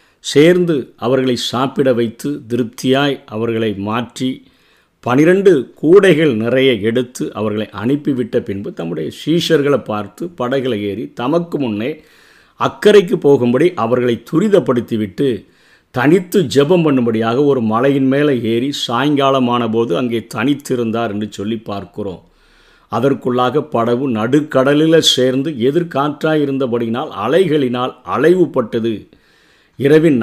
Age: 50-69